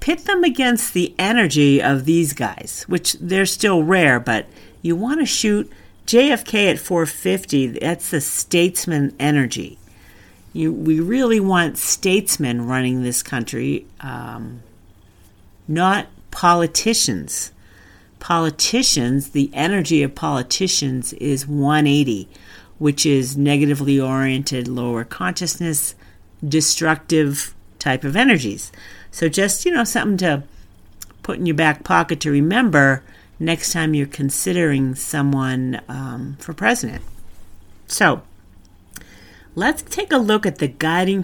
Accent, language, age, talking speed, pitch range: American, English, 50-69, 115 wpm, 120-175 Hz